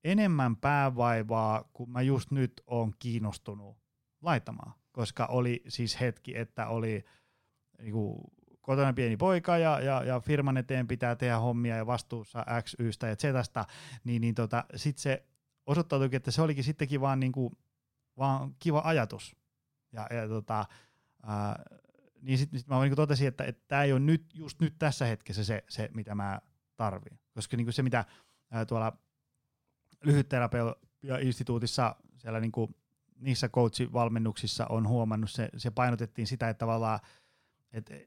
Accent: native